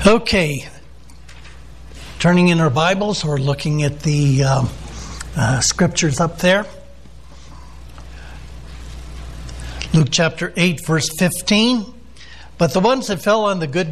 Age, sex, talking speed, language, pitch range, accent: 60-79, male, 115 wpm, English, 130-180 Hz, American